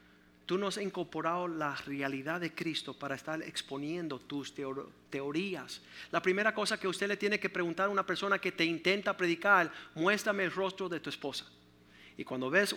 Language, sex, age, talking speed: Spanish, male, 50-69, 180 wpm